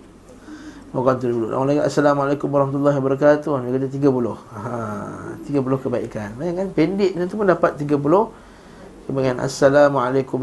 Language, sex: Malay, male